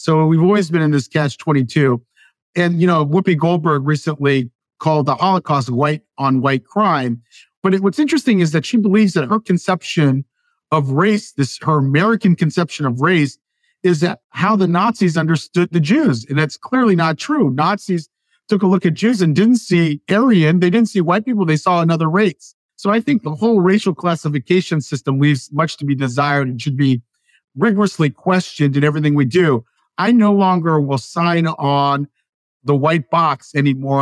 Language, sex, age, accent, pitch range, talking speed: English, male, 50-69, American, 145-200 Hz, 180 wpm